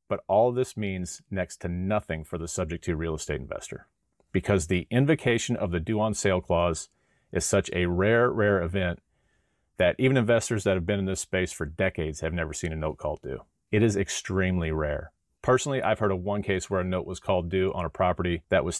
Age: 30-49